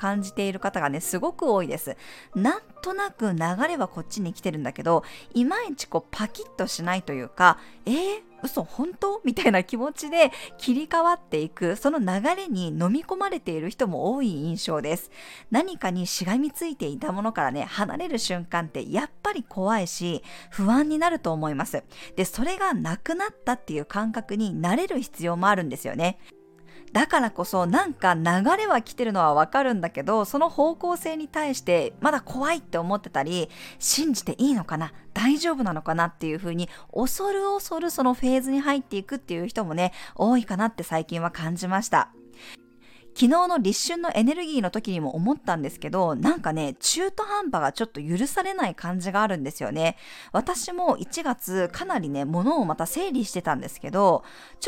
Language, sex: Japanese, female